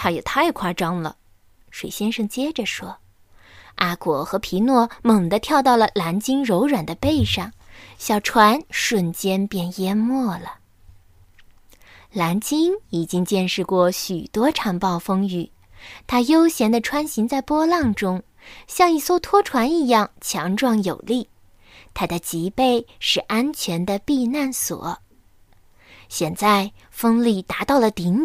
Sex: female